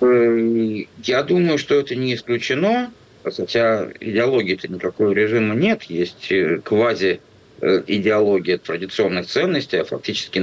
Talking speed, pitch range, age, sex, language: 100 wpm, 95-120 Hz, 50-69, male, Russian